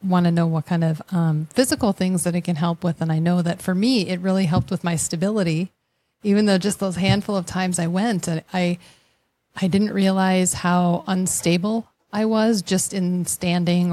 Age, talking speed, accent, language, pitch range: 30-49, 200 wpm, American, English, 175-195 Hz